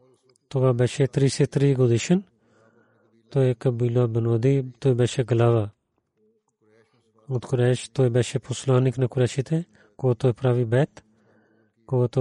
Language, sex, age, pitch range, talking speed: Bulgarian, male, 30-49, 115-130 Hz, 105 wpm